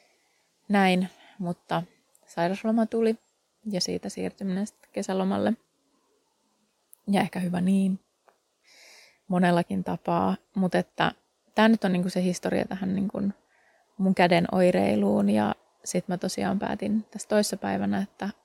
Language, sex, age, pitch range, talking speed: Finnish, female, 20-39, 180-215 Hz, 110 wpm